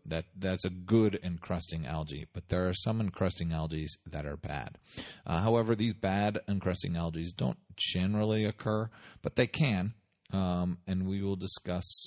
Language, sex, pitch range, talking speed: English, male, 85-110 Hz, 160 wpm